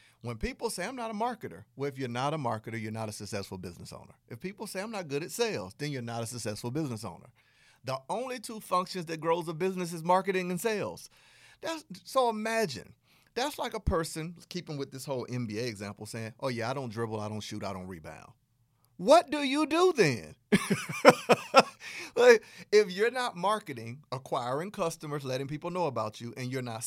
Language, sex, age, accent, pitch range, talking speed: English, male, 40-59, American, 110-175 Hz, 200 wpm